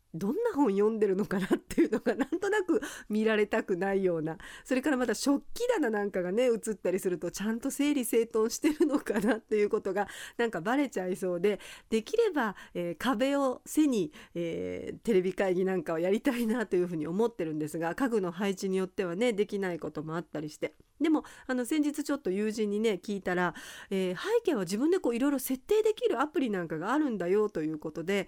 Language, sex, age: Japanese, female, 40-59